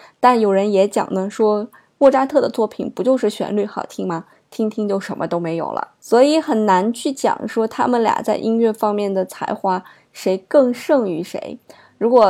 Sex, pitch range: female, 195-250 Hz